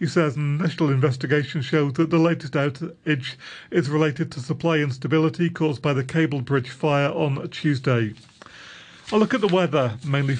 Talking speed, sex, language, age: 160 wpm, male, English, 40-59